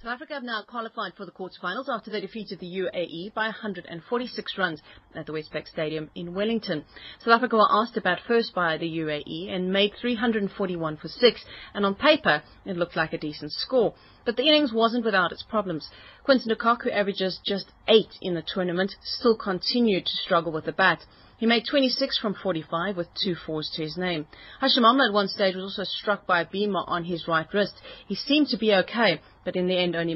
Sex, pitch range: female, 165-225 Hz